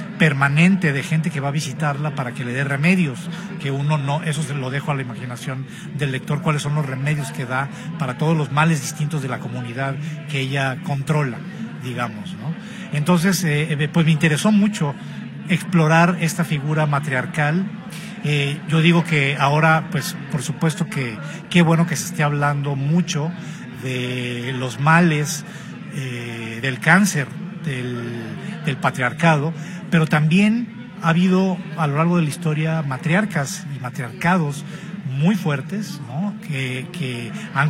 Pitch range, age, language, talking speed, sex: 140-175 Hz, 50-69, Spanish, 155 wpm, male